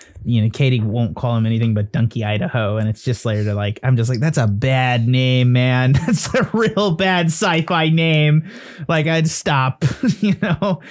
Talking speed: 195 wpm